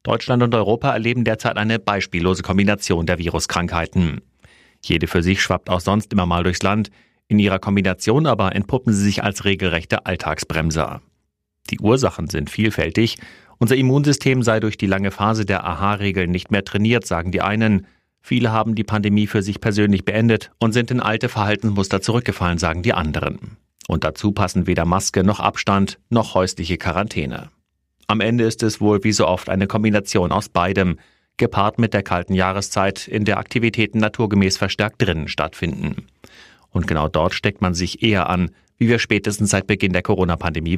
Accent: German